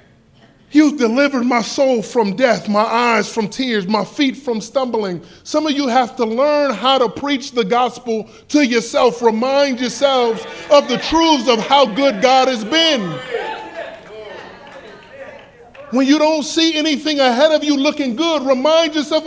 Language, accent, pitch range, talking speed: English, American, 210-295 Hz, 155 wpm